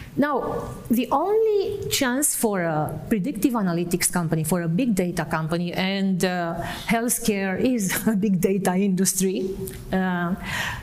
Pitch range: 175-230 Hz